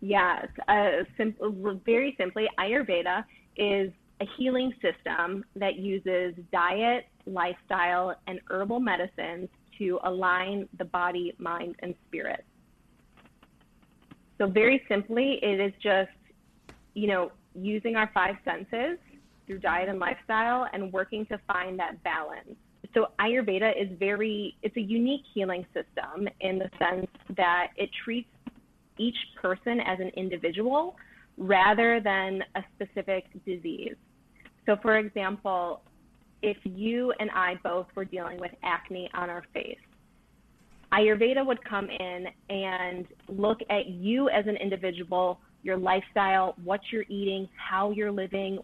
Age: 20-39